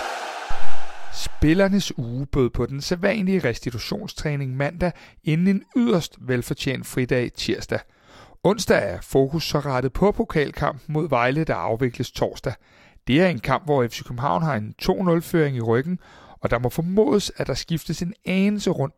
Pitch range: 120-180 Hz